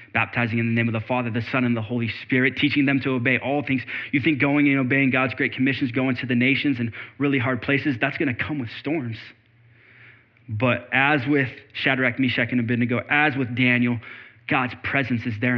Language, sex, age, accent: English, male, 20-39, American